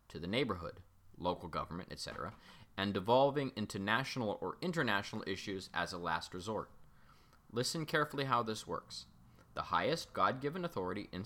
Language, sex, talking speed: English, male, 145 wpm